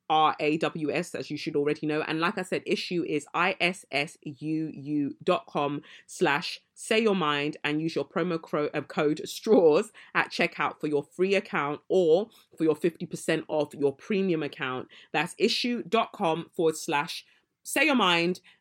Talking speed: 140 wpm